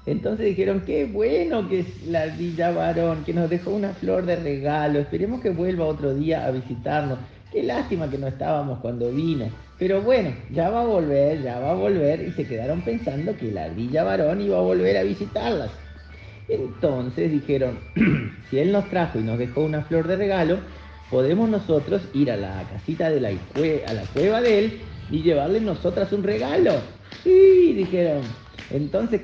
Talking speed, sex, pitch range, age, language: 180 wpm, male, 135-200 Hz, 40-59, Spanish